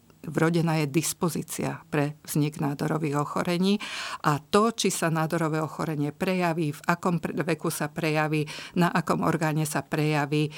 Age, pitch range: 50-69, 150-170 Hz